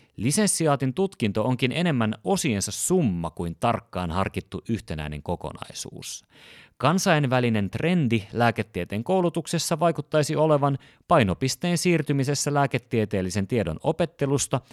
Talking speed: 90 wpm